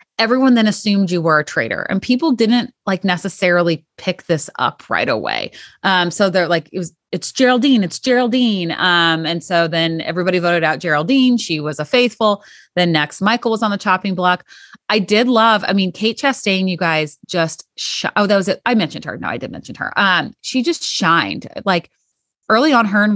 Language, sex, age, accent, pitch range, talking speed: English, female, 30-49, American, 165-210 Hz, 200 wpm